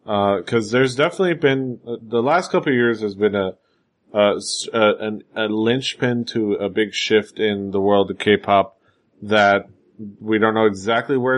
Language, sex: English, male